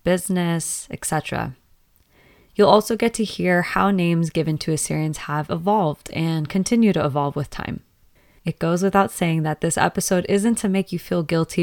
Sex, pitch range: female, 155-190 Hz